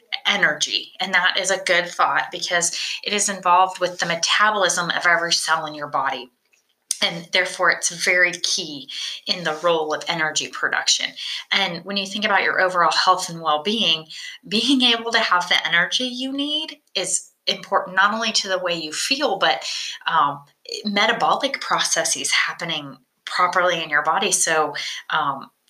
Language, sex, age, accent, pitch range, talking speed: English, female, 20-39, American, 170-220 Hz, 160 wpm